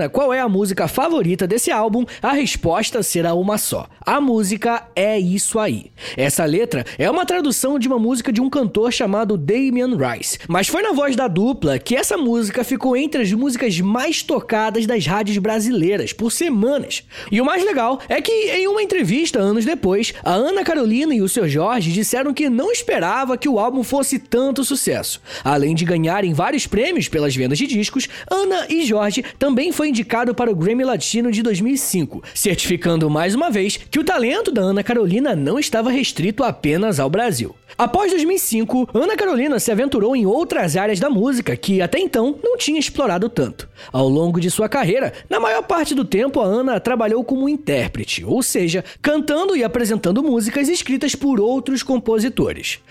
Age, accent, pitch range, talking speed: 20-39, Brazilian, 205-280 Hz, 180 wpm